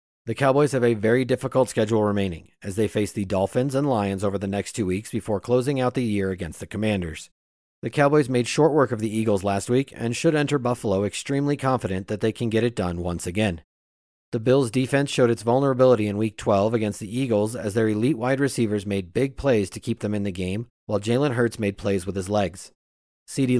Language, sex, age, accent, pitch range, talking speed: English, male, 40-59, American, 100-125 Hz, 220 wpm